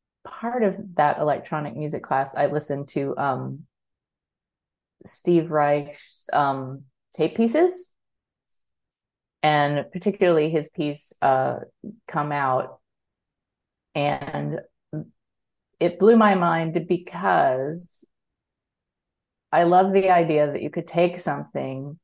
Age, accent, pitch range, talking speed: 30-49, American, 140-170 Hz, 100 wpm